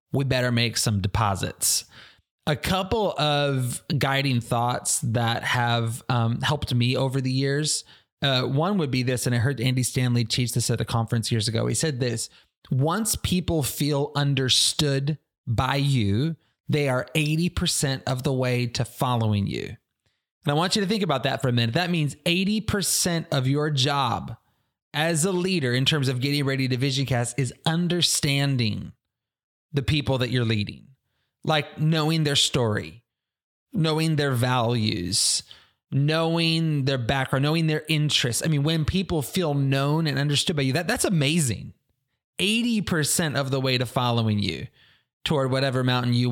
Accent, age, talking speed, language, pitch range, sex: American, 30-49, 160 wpm, English, 120-150 Hz, male